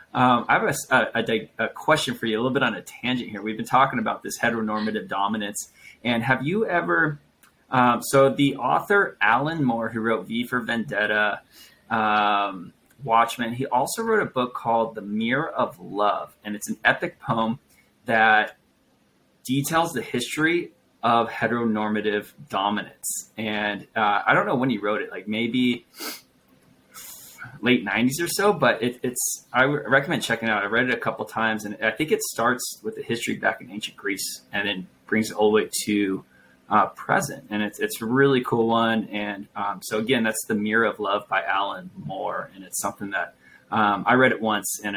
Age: 20-39